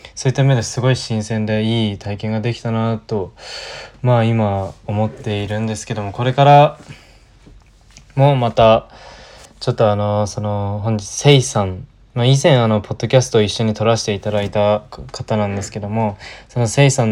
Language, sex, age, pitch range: Japanese, male, 20-39, 105-125 Hz